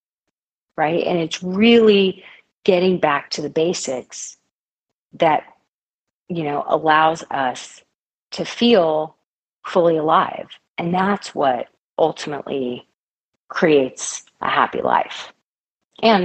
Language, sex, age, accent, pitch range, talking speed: English, female, 40-59, American, 155-195 Hz, 100 wpm